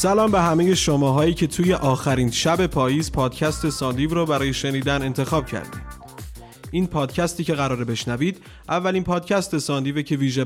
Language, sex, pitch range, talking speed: Persian, male, 125-165 Hz, 150 wpm